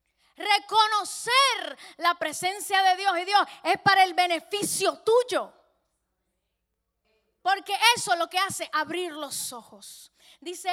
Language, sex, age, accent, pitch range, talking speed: English, female, 10-29, American, 290-380 Hz, 115 wpm